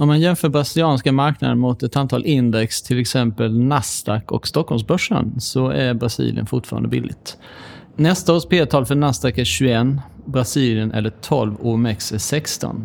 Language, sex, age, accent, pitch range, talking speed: Swedish, male, 30-49, native, 120-150 Hz, 155 wpm